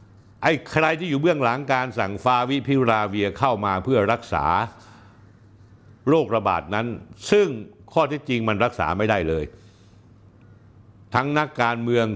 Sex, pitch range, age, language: male, 105-130 Hz, 60-79, Thai